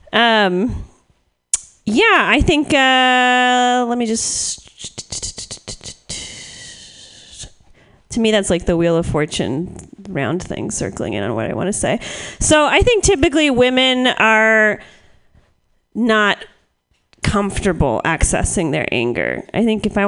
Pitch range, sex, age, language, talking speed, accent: 180-255 Hz, female, 30-49, English, 125 wpm, American